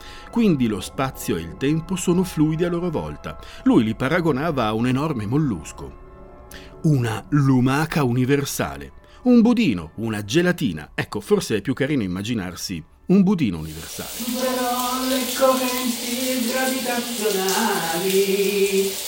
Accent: native